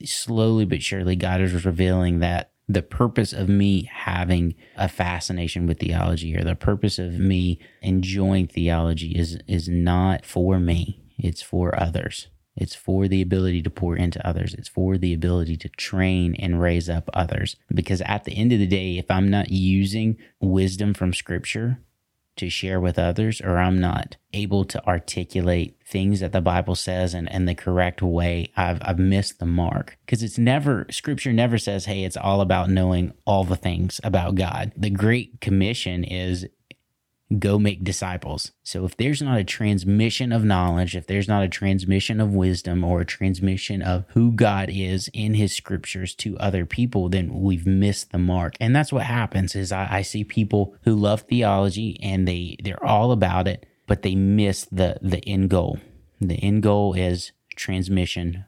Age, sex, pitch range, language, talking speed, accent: 30-49, male, 90-105 Hz, English, 180 wpm, American